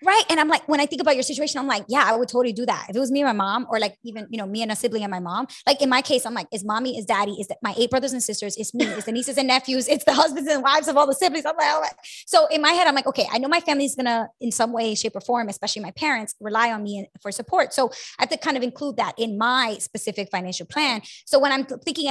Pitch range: 225-290 Hz